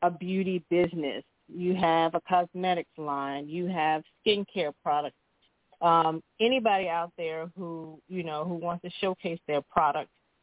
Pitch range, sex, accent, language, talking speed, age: 165-190 Hz, female, American, English, 145 wpm, 40-59